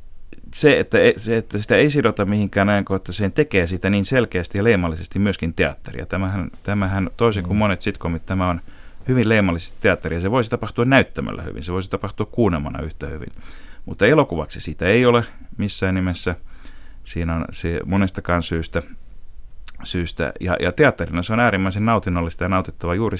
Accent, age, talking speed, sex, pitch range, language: native, 30-49, 165 wpm, male, 85-105 Hz, Finnish